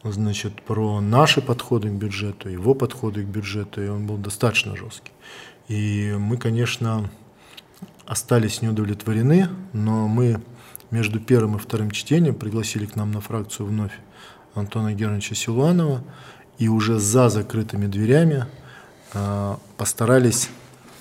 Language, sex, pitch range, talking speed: Russian, male, 105-125 Hz, 120 wpm